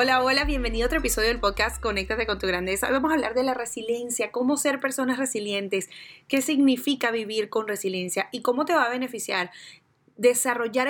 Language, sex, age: Spanish, female, 30-49